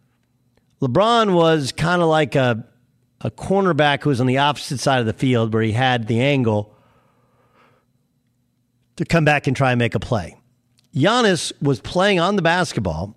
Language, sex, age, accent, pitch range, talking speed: English, male, 50-69, American, 125-165 Hz, 170 wpm